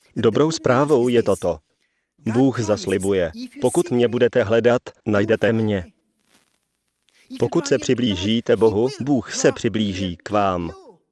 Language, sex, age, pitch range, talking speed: Slovak, male, 40-59, 110-140 Hz, 115 wpm